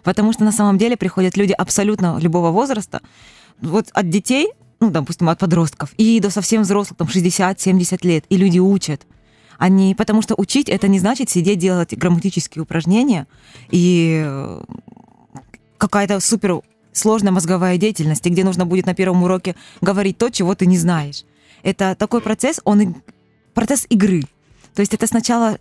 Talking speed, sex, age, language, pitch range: 155 wpm, female, 20-39, Russian, 180-220 Hz